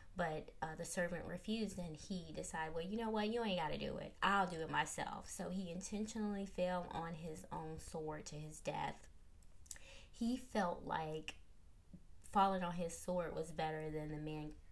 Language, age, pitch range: English, 20-39, 160-220 Hz